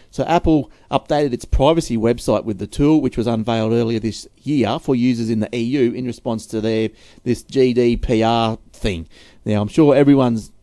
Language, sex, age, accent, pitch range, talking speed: English, male, 30-49, Australian, 110-135 Hz, 175 wpm